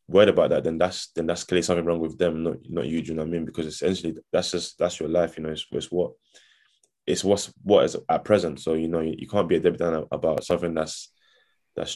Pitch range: 80-90 Hz